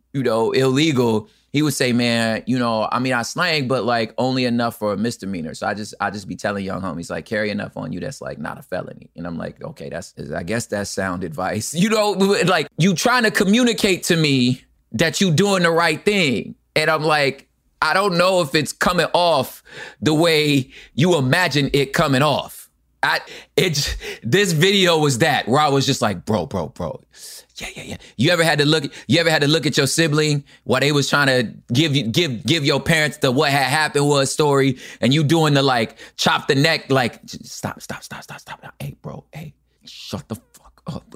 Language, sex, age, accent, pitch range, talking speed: English, male, 20-39, American, 115-170 Hz, 215 wpm